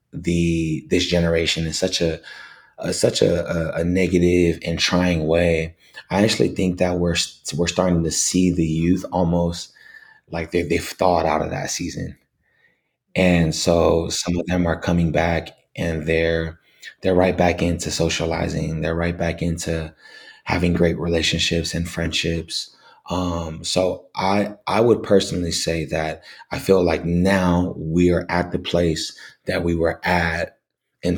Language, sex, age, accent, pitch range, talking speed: English, male, 20-39, American, 80-90 Hz, 155 wpm